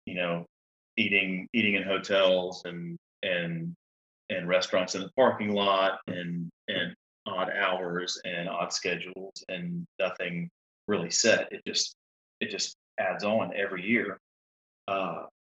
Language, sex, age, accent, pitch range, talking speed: English, male, 30-49, American, 90-100 Hz, 130 wpm